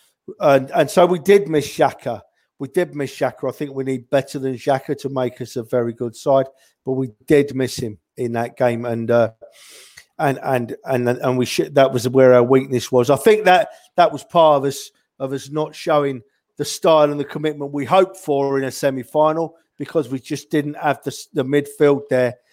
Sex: male